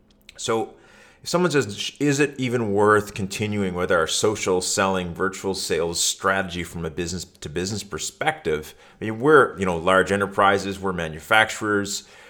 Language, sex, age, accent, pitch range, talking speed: English, male, 30-49, American, 95-125 Hz, 150 wpm